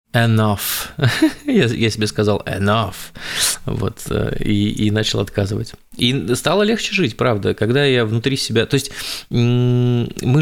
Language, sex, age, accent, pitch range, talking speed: Russian, male, 20-39, native, 100-120 Hz, 125 wpm